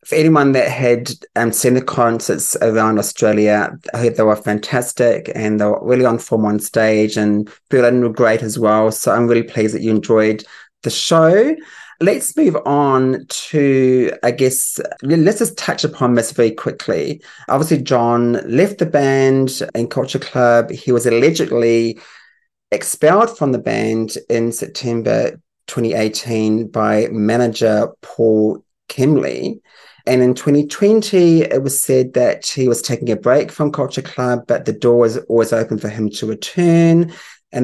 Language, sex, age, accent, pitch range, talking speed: English, male, 30-49, British, 115-145 Hz, 160 wpm